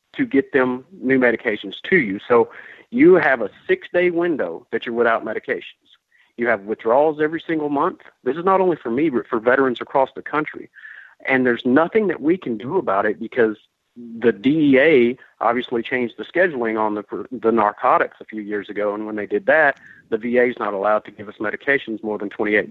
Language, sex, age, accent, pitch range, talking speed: English, male, 50-69, American, 115-160 Hz, 205 wpm